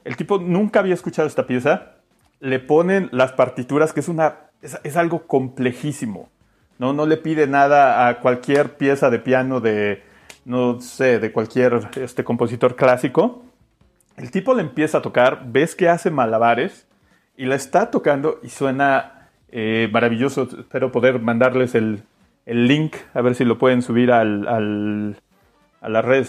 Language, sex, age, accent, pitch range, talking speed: Spanish, male, 40-59, Mexican, 115-140 Hz, 155 wpm